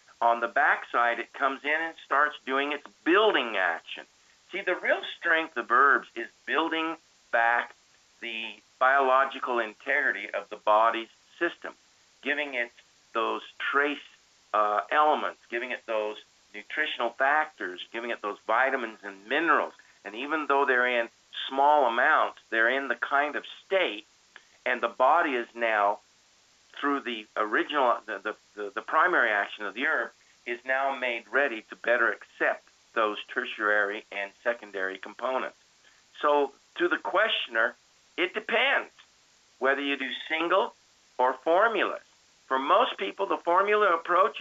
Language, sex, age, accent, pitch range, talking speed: English, male, 50-69, American, 110-140 Hz, 140 wpm